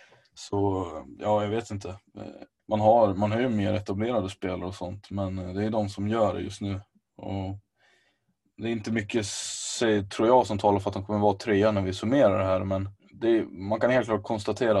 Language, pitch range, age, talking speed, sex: Swedish, 95-110 Hz, 20-39, 205 wpm, male